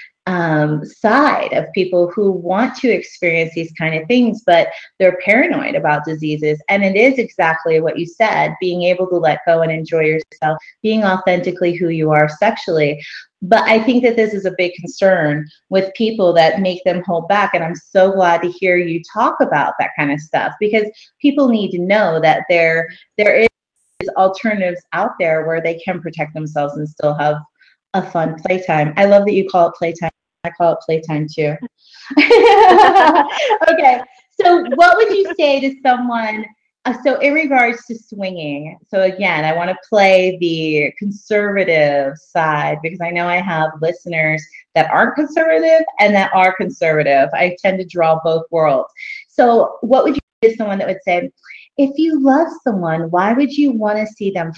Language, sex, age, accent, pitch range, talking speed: English, female, 30-49, American, 165-225 Hz, 180 wpm